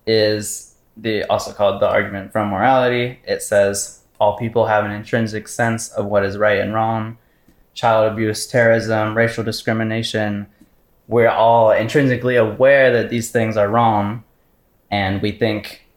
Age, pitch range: 10-29, 105-115 Hz